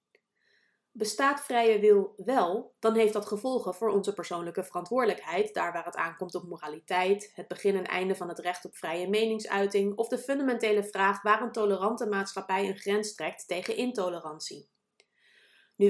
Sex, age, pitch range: female, 30-49, 185-225 Hz